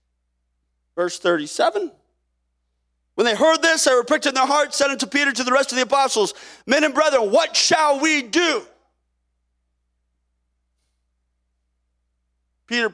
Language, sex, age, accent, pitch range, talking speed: English, male, 30-49, American, 210-355 Hz, 135 wpm